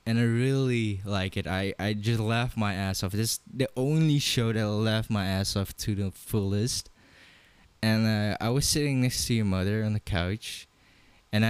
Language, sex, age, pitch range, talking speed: English, male, 20-39, 100-135 Hz, 205 wpm